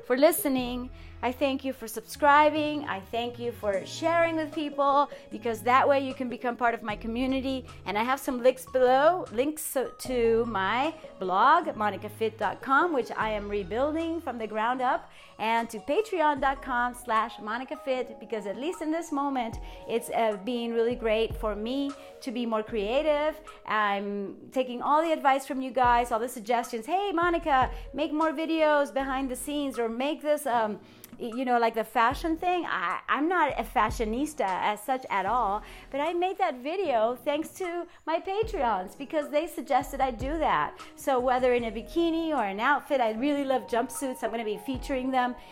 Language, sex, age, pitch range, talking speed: English, female, 30-49, 230-295 Hz, 175 wpm